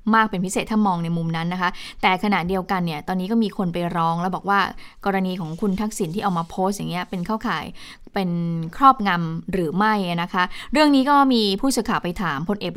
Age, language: 20-39, Thai